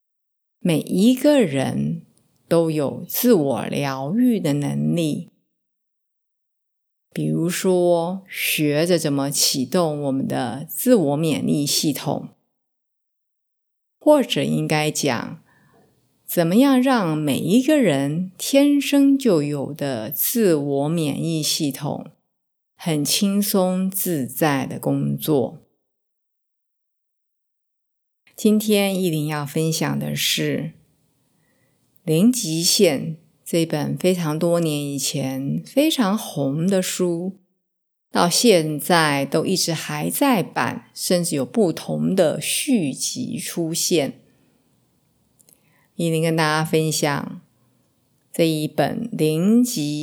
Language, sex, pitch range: Chinese, female, 145-195 Hz